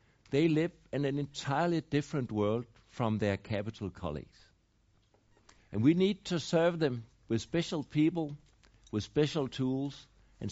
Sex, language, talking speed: male, English, 135 wpm